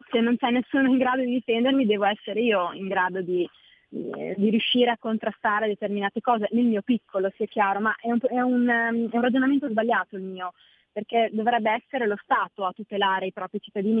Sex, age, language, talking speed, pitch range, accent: female, 20-39, Italian, 195 wpm, 205-235 Hz, native